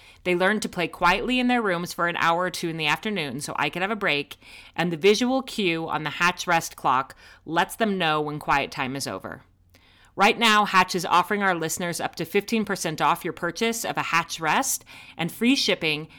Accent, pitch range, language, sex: American, 155-205 Hz, English, female